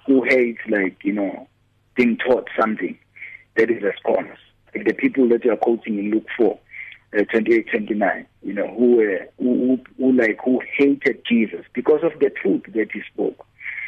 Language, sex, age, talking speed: English, male, 50-69, 190 wpm